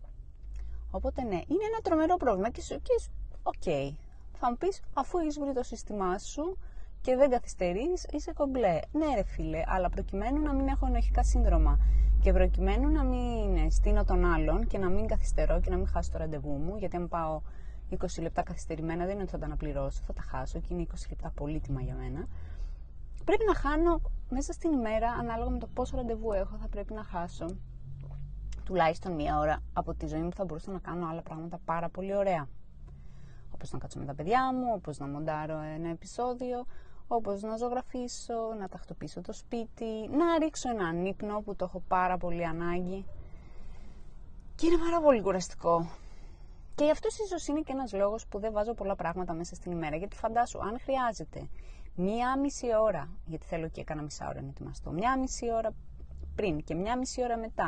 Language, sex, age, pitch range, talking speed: Greek, female, 20-39, 160-245 Hz, 185 wpm